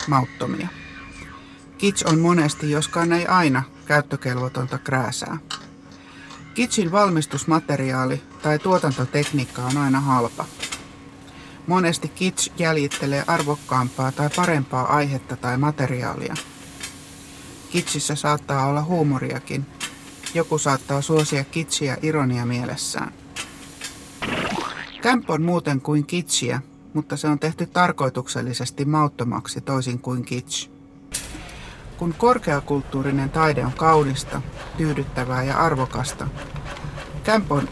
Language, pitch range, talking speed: Finnish, 130-155 Hz, 95 wpm